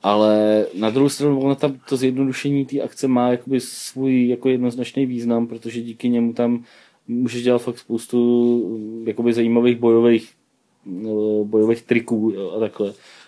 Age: 30-49